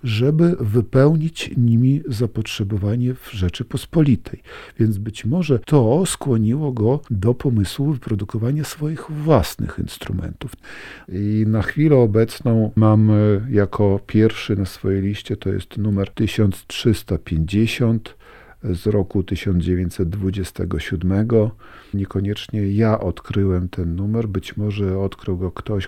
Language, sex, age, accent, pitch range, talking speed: Polish, male, 50-69, native, 95-115 Hz, 105 wpm